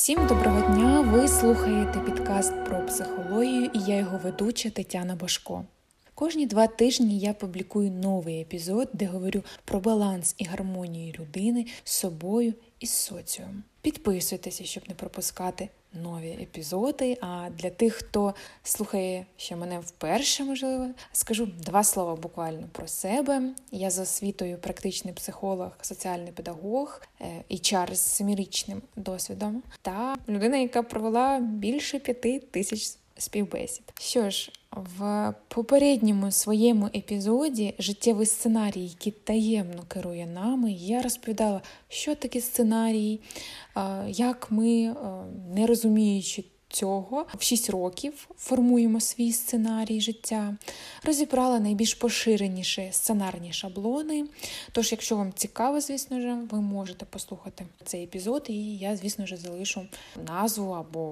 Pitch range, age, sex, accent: 185-235 Hz, 20-39, female, native